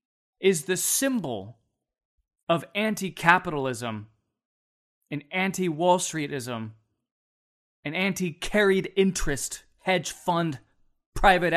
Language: English